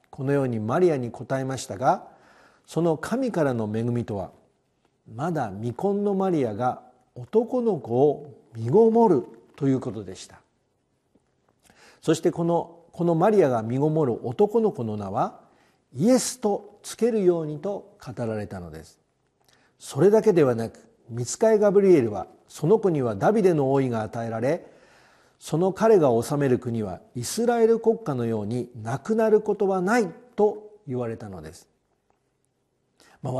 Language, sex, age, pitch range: Japanese, male, 50-69, 120-200 Hz